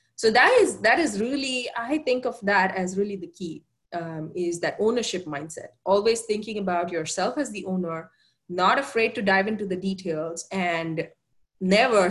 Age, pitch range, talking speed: 20-39, 175-220 Hz, 175 wpm